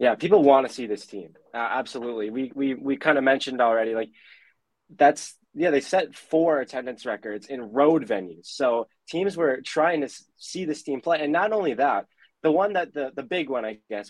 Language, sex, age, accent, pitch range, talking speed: English, male, 20-39, American, 115-150 Hz, 210 wpm